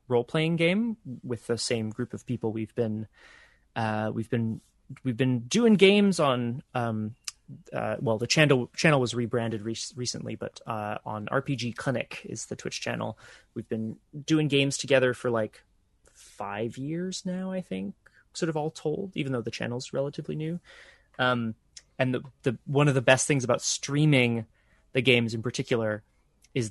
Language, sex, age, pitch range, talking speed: English, male, 20-39, 115-150 Hz, 170 wpm